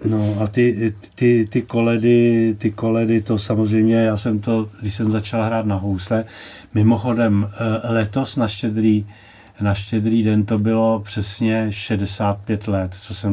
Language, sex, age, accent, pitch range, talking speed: Czech, male, 40-59, native, 100-110 Hz, 150 wpm